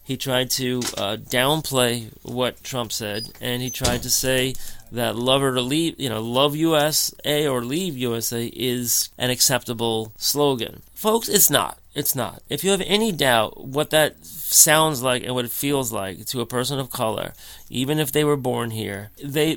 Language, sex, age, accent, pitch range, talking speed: English, male, 30-49, American, 120-145 Hz, 180 wpm